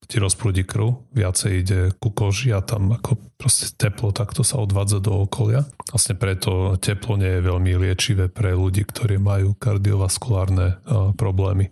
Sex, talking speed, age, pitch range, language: male, 150 wpm, 30-49, 95-115 Hz, Slovak